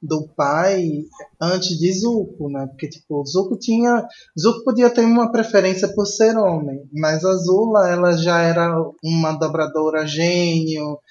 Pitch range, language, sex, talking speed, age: 160-195 Hz, Portuguese, male, 145 wpm, 20-39